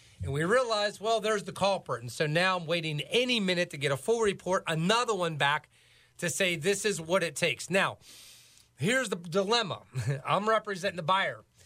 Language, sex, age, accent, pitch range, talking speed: English, male, 40-59, American, 150-190 Hz, 190 wpm